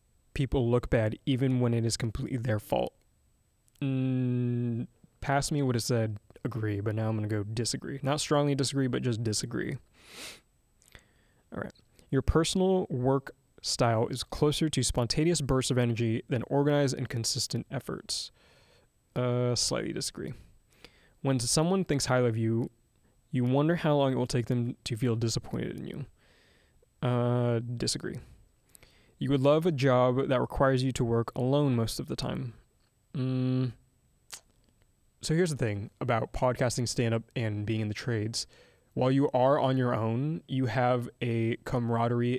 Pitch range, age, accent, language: 115-135 Hz, 20-39, American, English